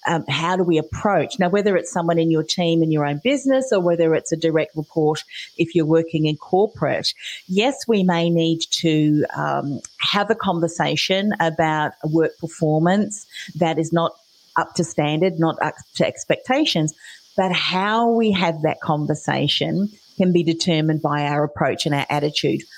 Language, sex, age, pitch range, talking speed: English, female, 40-59, 160-205 Hz, 170 wpm